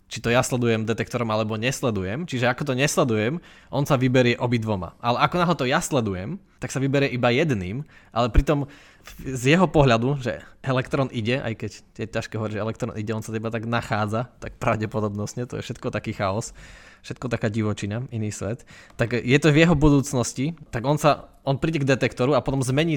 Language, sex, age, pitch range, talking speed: Slovak, male, 20-39, 110-135 Hz, 195 wpm